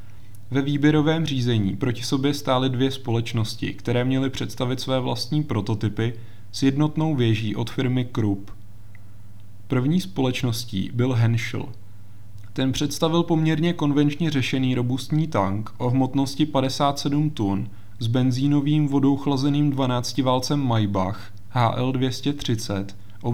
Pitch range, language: 105-135 Hz, Czech